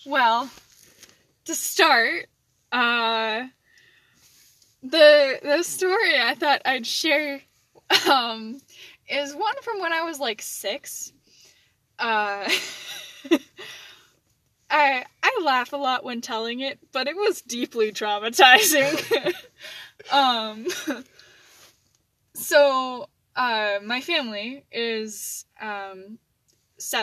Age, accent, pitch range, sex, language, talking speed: 10-29, American, 220-290 Hz, female, English, 95 wpm